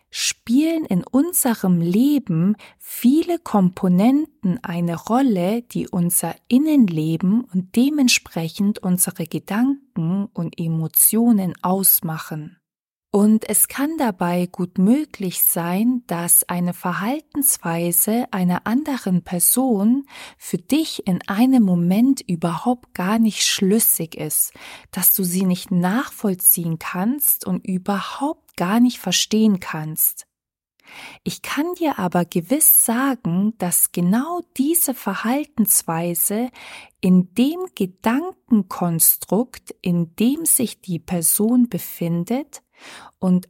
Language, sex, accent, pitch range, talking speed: German, female, German, 180-250 Hz, 100 wpm